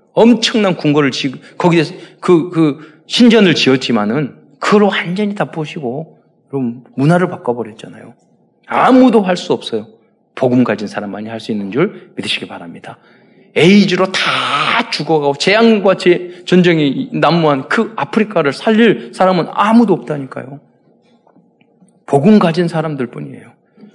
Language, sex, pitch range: Korean, male, 155-230 Hz